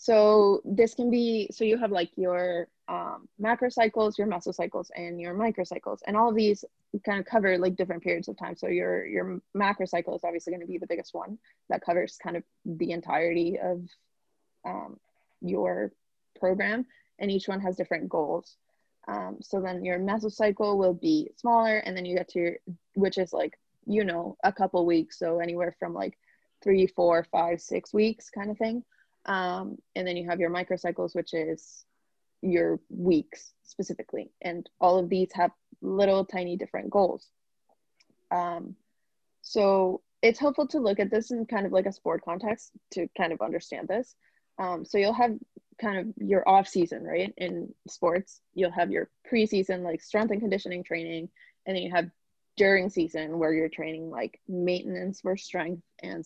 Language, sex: English, female